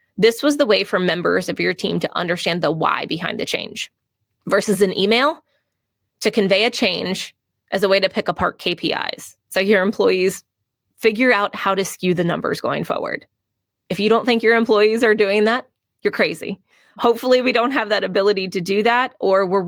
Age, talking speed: 20-39, 195 wpm